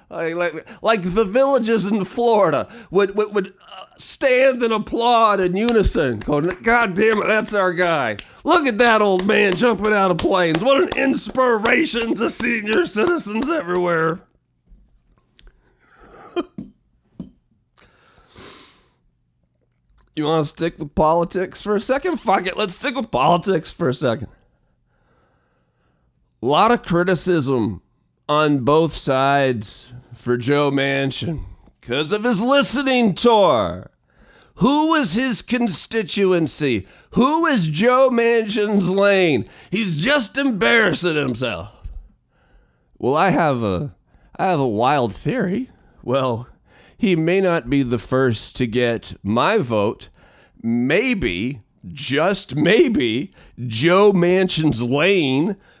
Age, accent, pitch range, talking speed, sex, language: 40-59, American, 145-235 Hz, 115 wpm, male, English